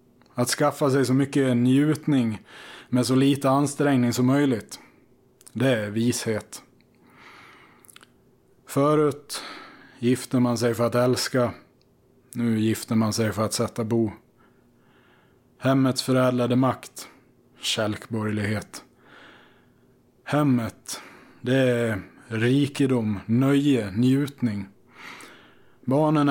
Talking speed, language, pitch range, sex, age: 95 wpm, Swedish, 115-130 Hz, male, 20-39